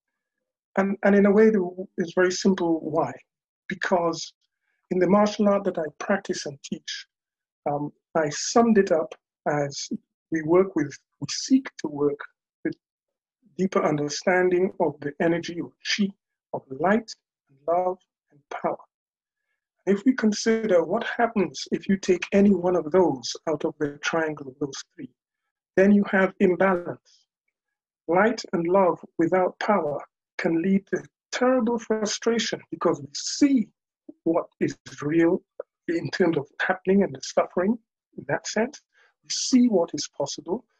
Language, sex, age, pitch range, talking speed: English, male, 50-69, 165-220 Hz, 145 wpm